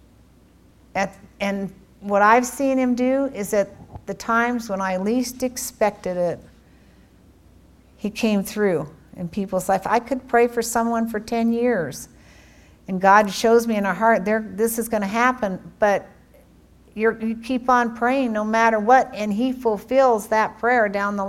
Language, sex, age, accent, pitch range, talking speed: English, female, 60-79, American, 190-235 Hz, 160 wpm